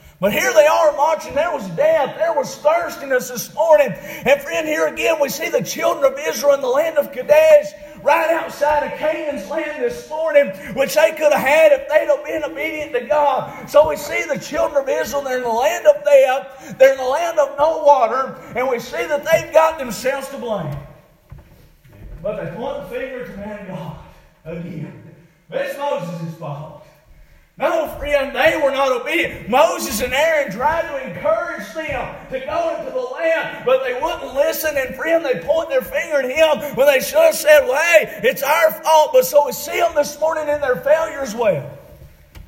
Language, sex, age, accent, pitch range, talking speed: English, male, 40-59, American, 225-310 Hz, 200 wpm